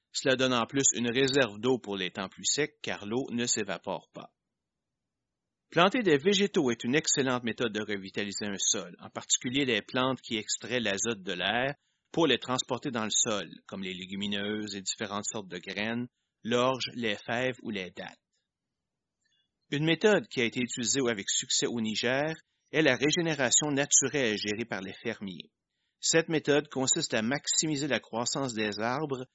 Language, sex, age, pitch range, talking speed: French, male, 30-49, 110-140 Hz, 170 wpm